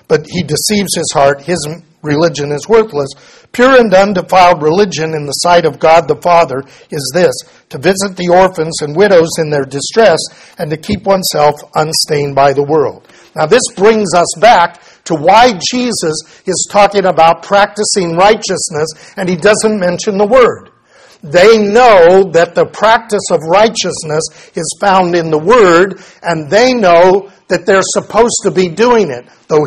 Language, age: English, 50-69